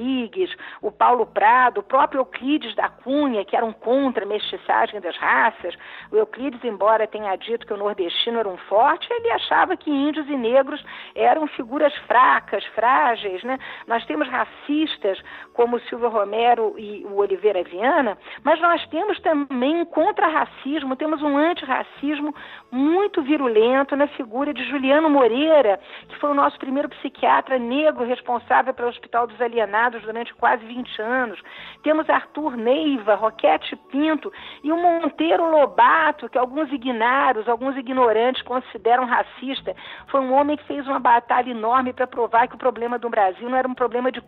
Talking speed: 155 wpm